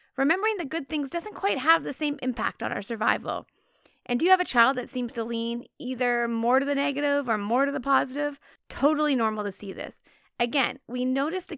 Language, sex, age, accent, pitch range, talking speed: English, female, 30-49, American, 225-285 Hz, 220 wpm